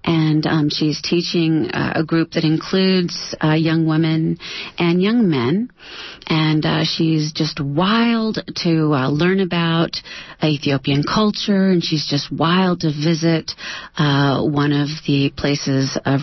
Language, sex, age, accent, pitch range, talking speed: English, female, 40-59, American, 150-180 Hz, 140 wpm